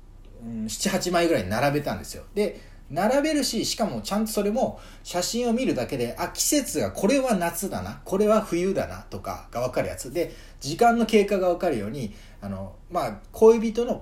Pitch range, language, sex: 105-175 Hz, Japanese, male